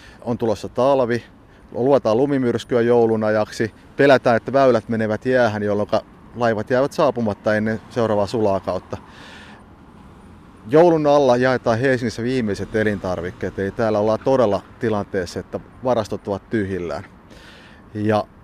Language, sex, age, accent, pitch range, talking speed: Finnish, male, 30-49, native, 100-120 Hz, 115 wpm